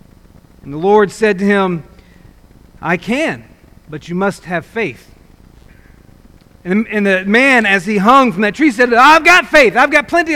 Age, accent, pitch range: 40-59, American, 185-245 Hz